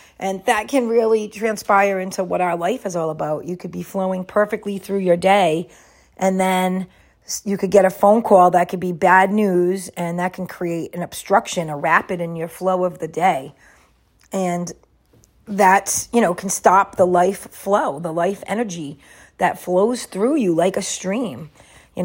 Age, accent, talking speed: 40-59, American, 180 wpm